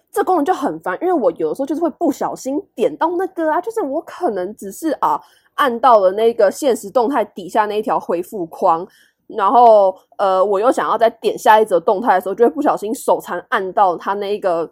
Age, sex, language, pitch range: 20-39, female, Chinese, 200-325 Hz